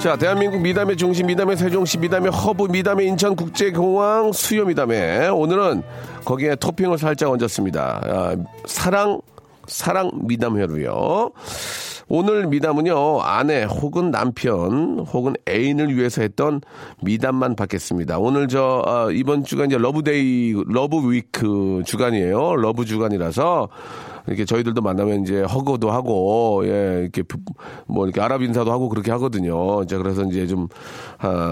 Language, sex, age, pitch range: Korean, male, 40-59, 105-165 Hz